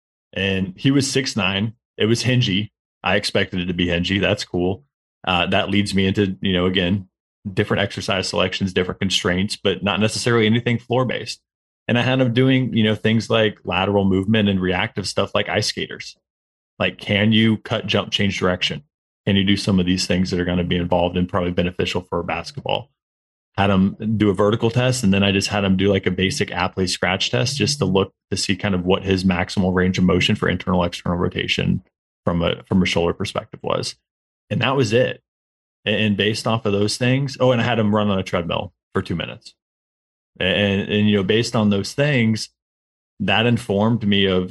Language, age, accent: English, 30-49, American